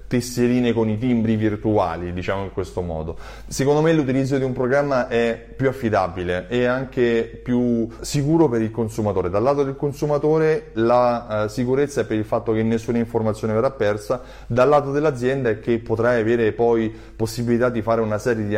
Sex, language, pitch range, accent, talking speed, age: male, Italian, 105-135 Hz, native, 175 wpm, 30-49